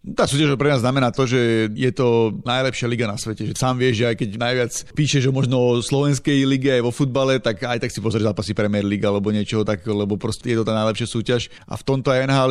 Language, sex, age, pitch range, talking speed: Slovak, male, 30-49, 110-125 Hz, 245 wpm